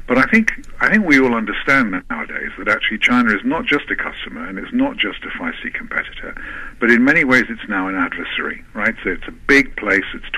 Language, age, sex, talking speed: English, 50-69, male, 225 wpm